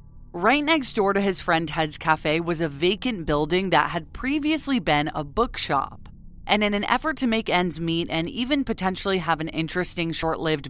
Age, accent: 20-39, American